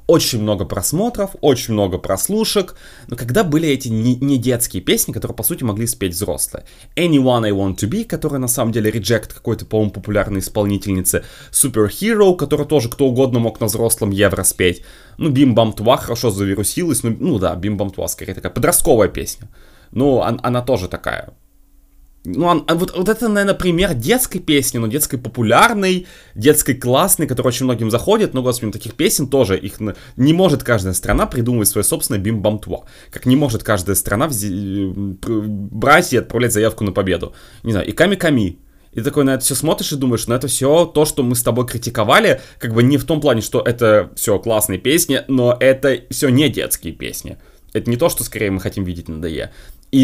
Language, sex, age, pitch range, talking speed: Russian, male, 20-39, 105-145 Hz, 190 wpm